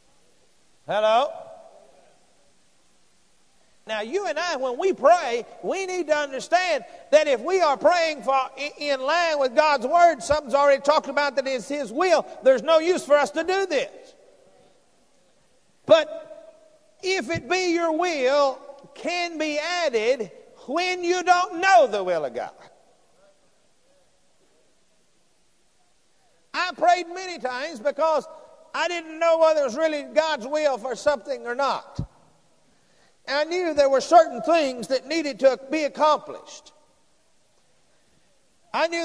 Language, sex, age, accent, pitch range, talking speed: English, male, 50-69, American, 270-320 Hz, 135 wpm